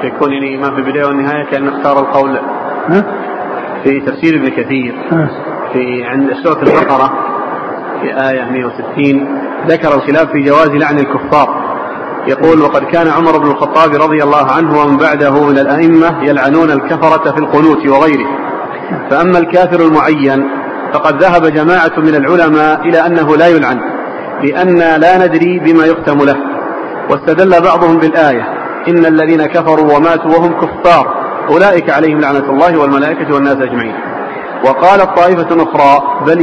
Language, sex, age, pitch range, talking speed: Arabic, male, 40-59, 145-170 Hz, 130 wpm